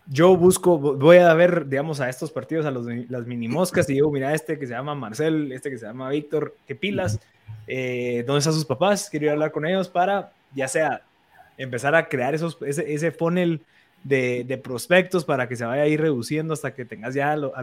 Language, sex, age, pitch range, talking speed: Spanish, male, 20-39, 130-165 Hz, 225 wpm